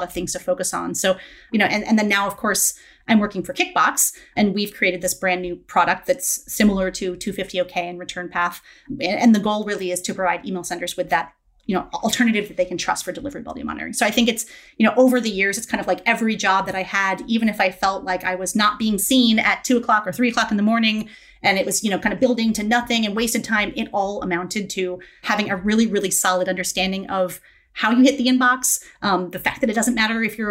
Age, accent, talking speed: 30-49, American, 255 wpm